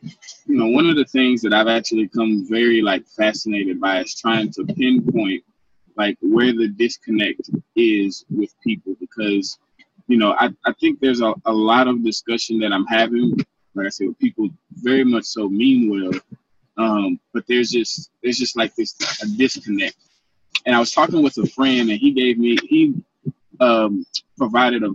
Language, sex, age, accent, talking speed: English, male, 20-39, American, 180 wpm